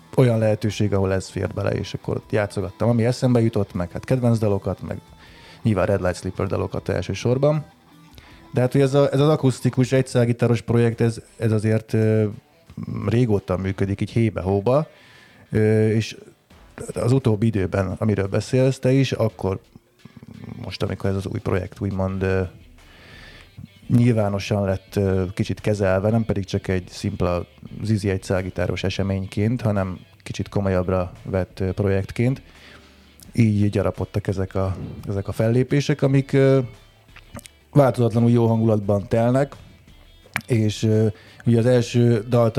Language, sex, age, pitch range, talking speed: Hungarian, male, 30-49, 95-120 Hz, 130 wpm